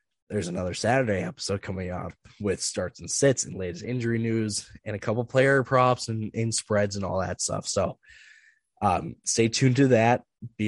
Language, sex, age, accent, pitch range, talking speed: English, male, 20-39, American, 105-125 Hz, 185 wpm